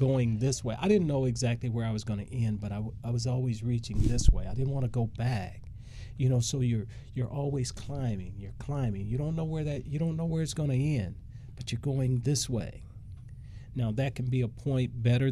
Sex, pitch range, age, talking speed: male, 110-130 Hz, 40-59, 245 wpm